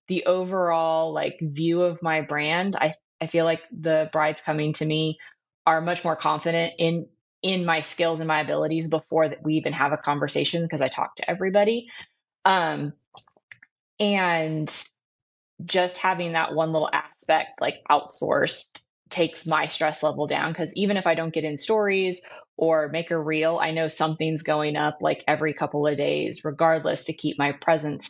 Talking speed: 175 wpm